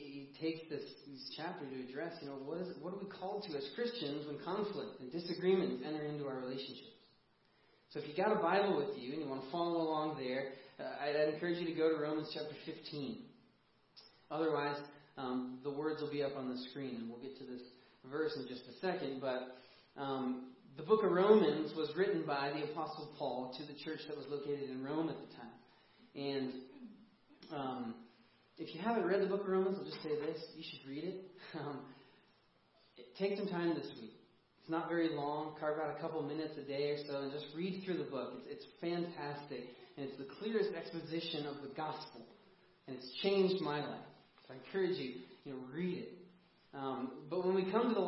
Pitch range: 140-170 Hz